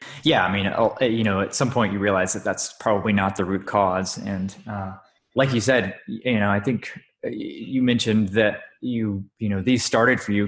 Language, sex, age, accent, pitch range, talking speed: English, male, 20-39, American, 95-115 Hz, 205 wpm